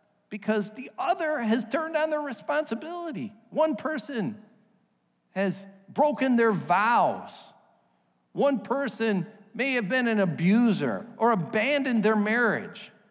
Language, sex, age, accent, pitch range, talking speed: English, male, 50-69, American, 195-270 Hz, 115 wpm